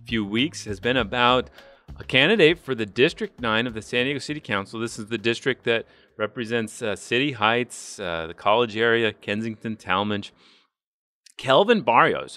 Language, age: English, 30-49